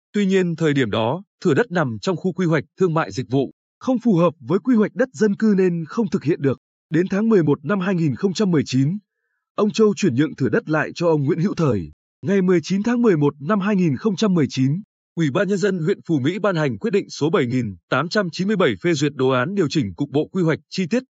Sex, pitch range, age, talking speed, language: male, 150-200 Hz, 20-39, 220 wpm, Vietnamese